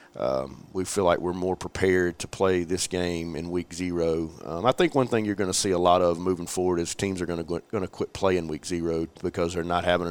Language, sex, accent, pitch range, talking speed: English, male, American, 85-100 Hz, 255 wpm